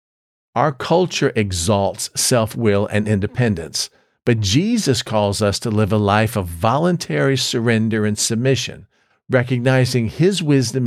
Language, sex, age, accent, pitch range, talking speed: English, male, 50-69, American, 110-140 Hz, 120 wpm